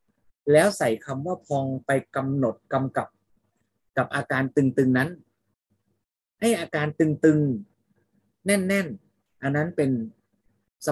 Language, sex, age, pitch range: Thai, male, 30-49, 120-155 Hz